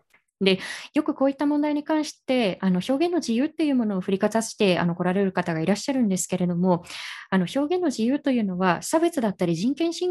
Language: Japanese